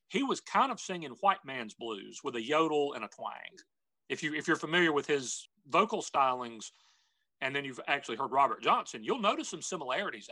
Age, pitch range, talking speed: 40-59, 130-180 Hz, 200 wpm